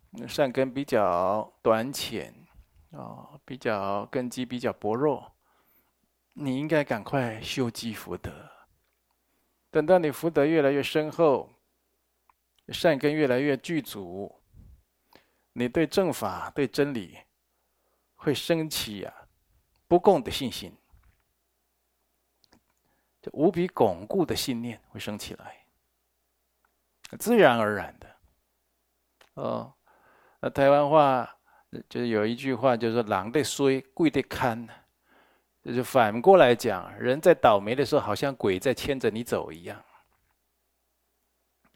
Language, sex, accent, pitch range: Chinese, male, native, 110-145 Hz